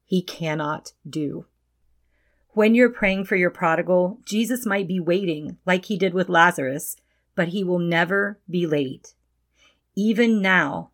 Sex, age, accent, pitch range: female, 40-59, American, 155-200 Hz